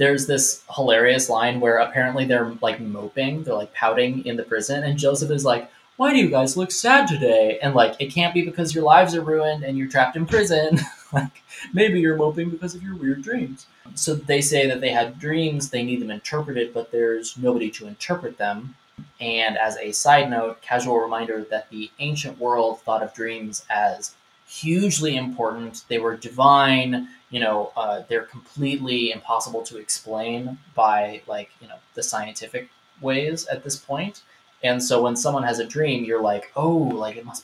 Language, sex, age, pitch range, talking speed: English, male, 20-39, 115-150 Hz, 190 wpm